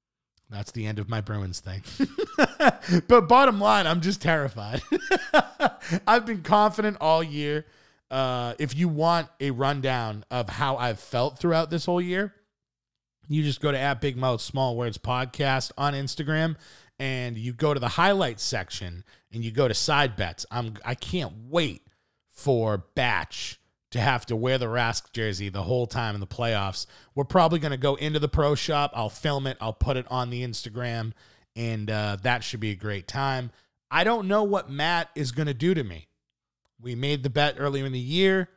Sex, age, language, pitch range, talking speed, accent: male, 30-49, English, 115-160 Hz, 190 wpm, American